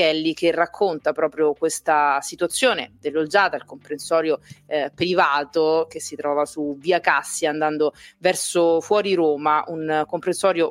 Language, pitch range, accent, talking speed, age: Italian, 155-190 Hz, native, 130 wpm, 30-49